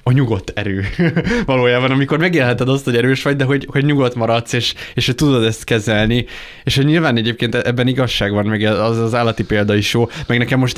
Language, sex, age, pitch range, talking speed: Hungarian, male, 20-39, 105-130 Hz, 210 wpm